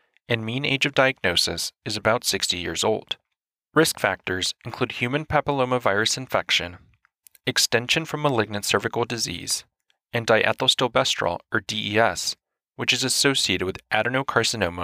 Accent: American